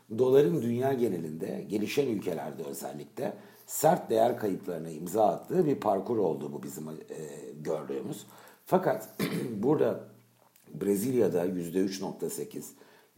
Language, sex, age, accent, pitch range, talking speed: Turkish, male, 60-79, native, 90-120 Hz, 100 wpm